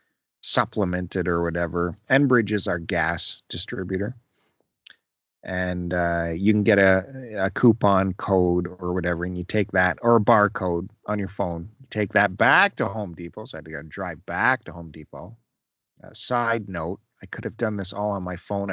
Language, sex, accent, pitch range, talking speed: English, male, American, 95-135 Hz, 185 wpm